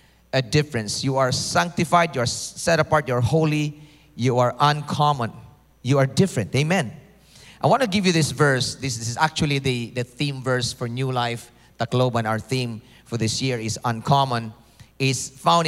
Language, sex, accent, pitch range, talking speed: English, male, Filipino, 130-180 Hz, 190 wpm